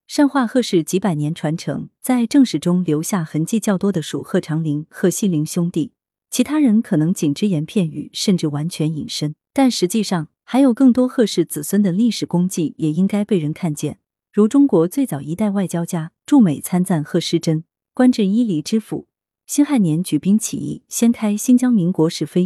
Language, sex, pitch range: Chinese, female, 160-220 Hz